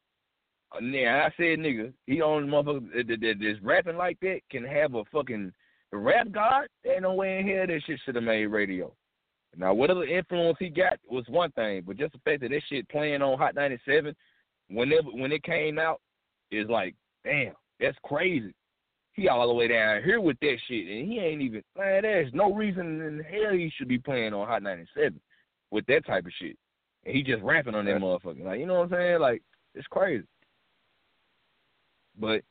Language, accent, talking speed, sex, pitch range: English, American, 200 wpm, male, 115-180 Hz